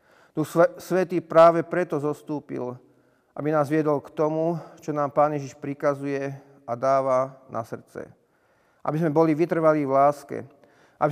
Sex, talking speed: male, 140 wpm